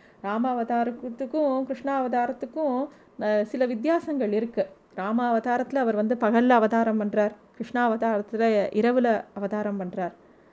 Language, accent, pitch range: Tamil, native, 215-270 Hz